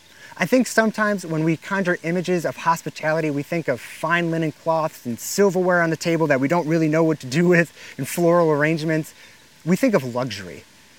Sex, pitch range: male, 150-195 Hz